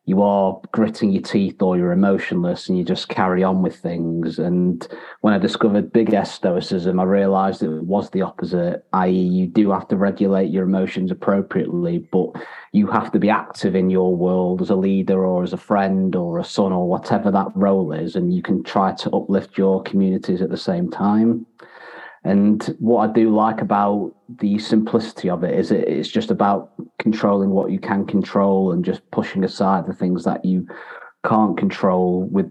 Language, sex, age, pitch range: English, male, 30-49, 95-105 Hz